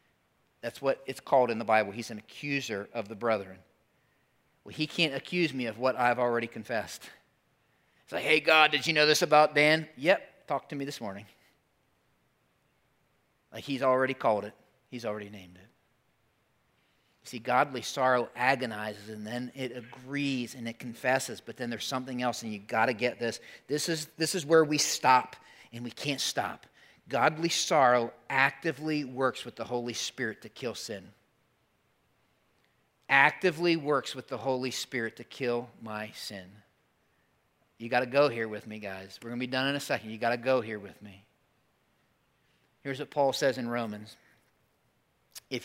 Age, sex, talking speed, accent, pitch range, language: 40-59, male, 175 wpm, American, 115-140 Hz, English